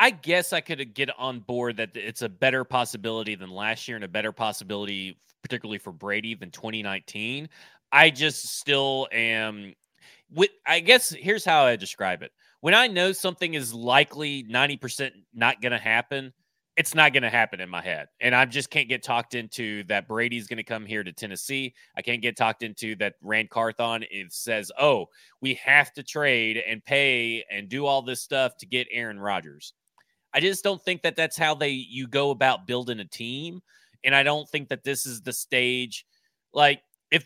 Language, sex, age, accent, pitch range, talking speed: English, male, 30-49, American, 115-155 Hz, 195 wpm